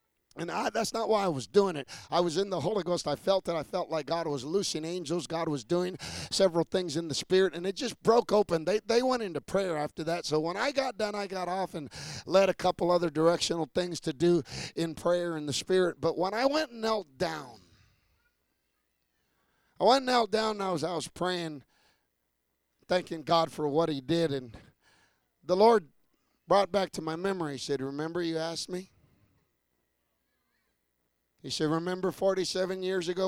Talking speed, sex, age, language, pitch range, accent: 200 wpm, male, 50-69, English, 160-195 Hz, American